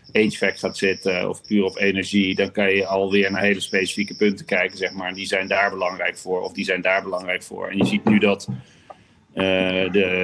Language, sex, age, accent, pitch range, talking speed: Dutch, male, 40-59, Dutch, 95-110 Hz, 215 wpm